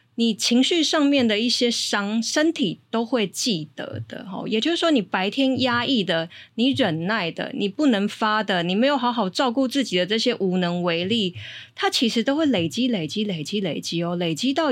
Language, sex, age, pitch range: Chinese, female, 20-39, 180-245 Hz